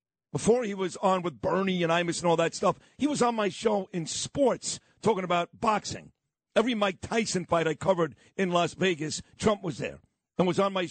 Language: English